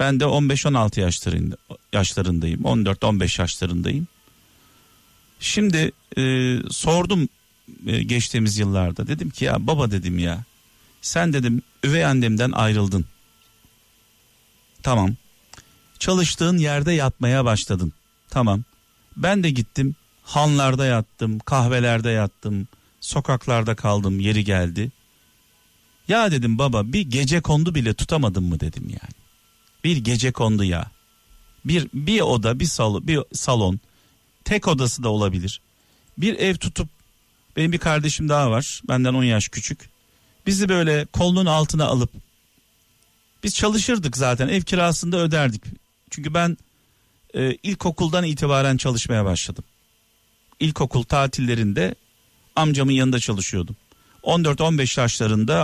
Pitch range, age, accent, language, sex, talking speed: 110-150 Hz, 50-69, native, Turkish, male, 110 wpm